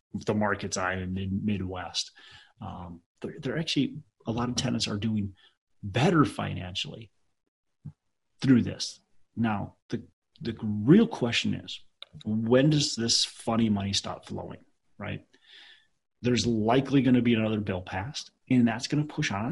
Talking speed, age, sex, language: 145 wpm, 30-49, male, English